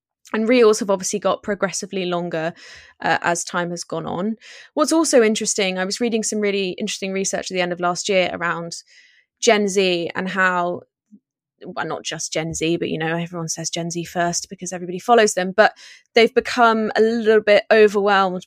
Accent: British